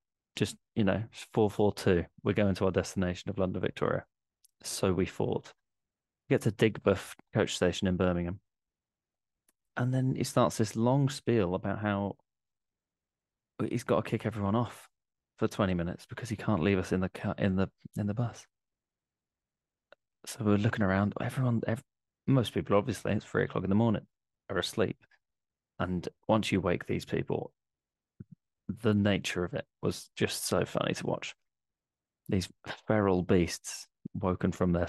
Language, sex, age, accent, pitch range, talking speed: English, male, 20-39, British, 90-115 Hz, 165 wpm